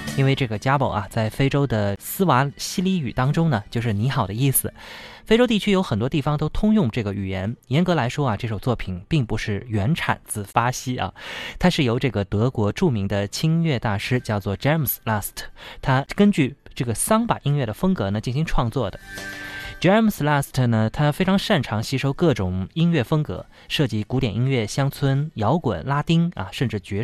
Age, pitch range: 20-39, 105-145 Hz